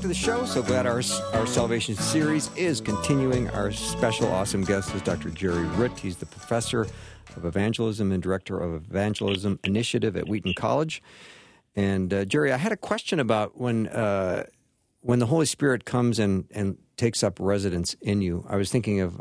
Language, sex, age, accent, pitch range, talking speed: English, male, 50-69, American, 95-120 Hz, 180 wpm